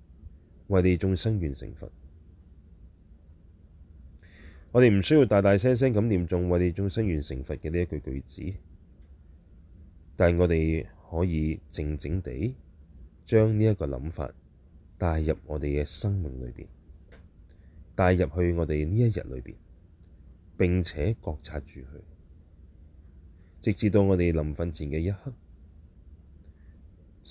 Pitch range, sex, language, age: 75-90 Hz, male, Chinese, 30-49